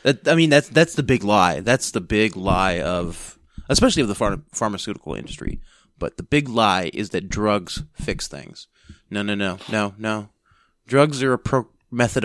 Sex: male